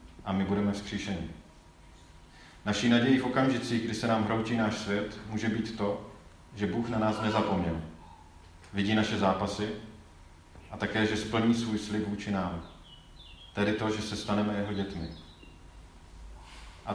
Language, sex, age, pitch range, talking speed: Czech, male, 40-59, 85-110 Hz, 145 wpm